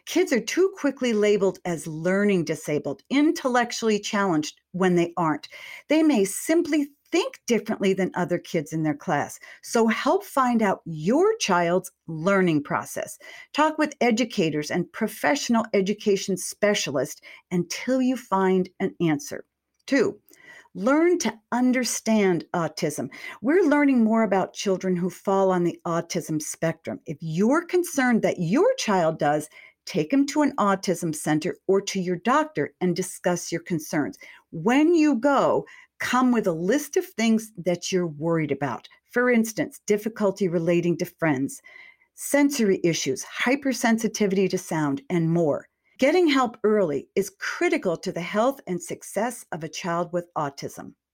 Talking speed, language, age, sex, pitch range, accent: 145 wpm, English, 50-69, female, 175-255 Hz, American